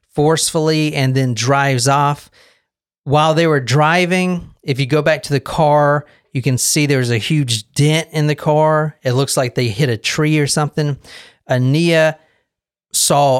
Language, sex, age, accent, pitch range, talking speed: English, male, 40-59, American, 125-150 Hz, 165 wpm